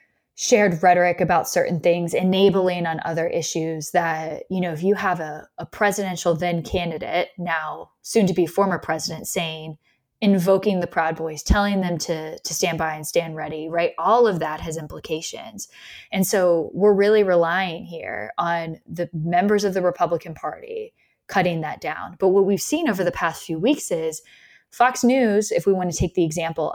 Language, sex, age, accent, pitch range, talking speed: English, female, 10-29, American, 165-205 Hz, 180 wpm